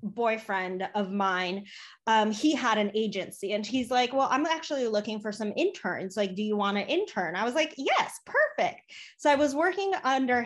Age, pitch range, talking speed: 20-39, 205-290 Hz, 195 wpm